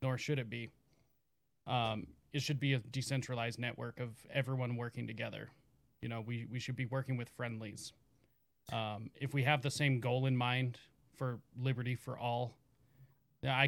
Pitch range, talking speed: 120-135 Hz, 165 wpm